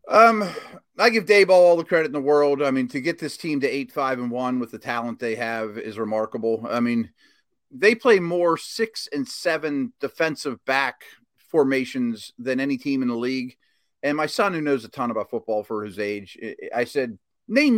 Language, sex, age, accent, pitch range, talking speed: English, male, 40-59, American, 120-165 Hz, 205 wpm